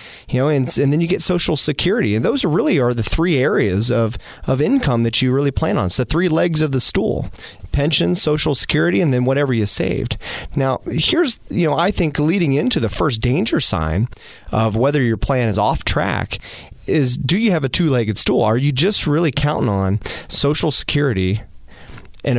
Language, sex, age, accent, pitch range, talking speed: English, male, 30-49, American, 115-160 Hz, 200 wpm